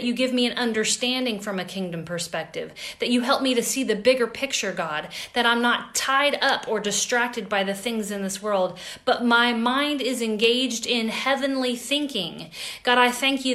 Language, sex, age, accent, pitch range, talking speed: English, female, 40-59, American, 205-255 Hz, 195 wpm